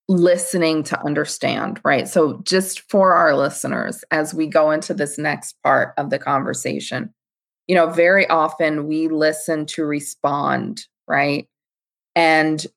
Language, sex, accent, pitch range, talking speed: English, female, American, 160-195 Hz, 135 wpm